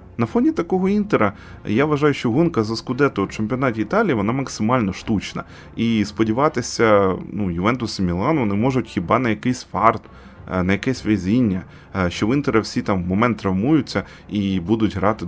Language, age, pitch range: Ukrainian, 20-39, 100-130 Hz